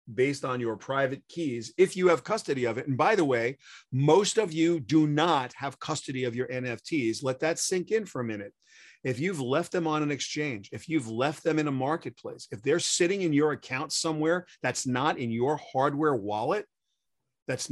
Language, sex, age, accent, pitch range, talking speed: English, male, 40-59, American, 125-160 Hz, 205 wpm